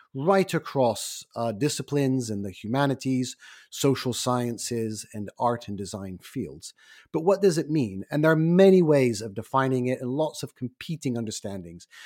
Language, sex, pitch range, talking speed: English, male, 110-145 Hz, 160 wpm